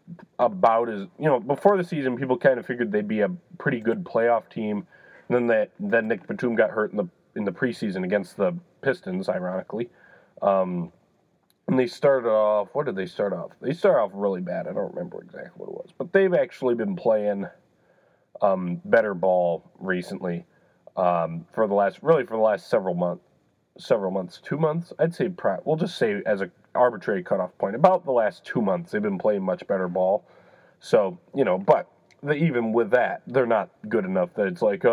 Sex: male